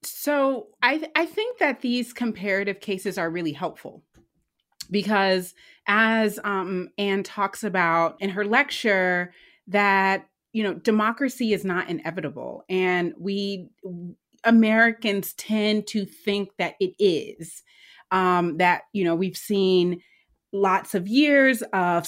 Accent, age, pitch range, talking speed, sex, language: American, 30-49, 175-230 Hz, 130 wpm, female, English